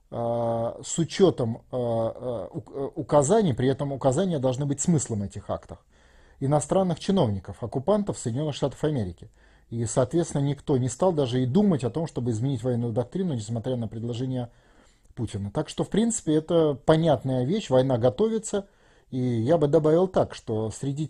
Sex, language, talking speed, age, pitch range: male, Russian, 145 wpm, 30-49, 120-160 Hz